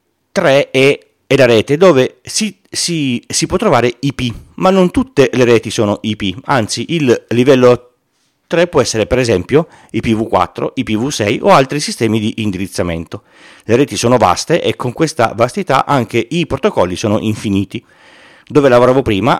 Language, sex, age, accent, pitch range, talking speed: Italian, male, 40-59, native, 110-145 Hz, 150 wpm